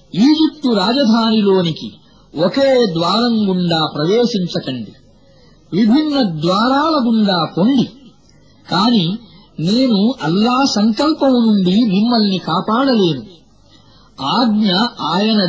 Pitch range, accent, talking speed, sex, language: 180-255 Hz, Indian, 85 wpm, male, English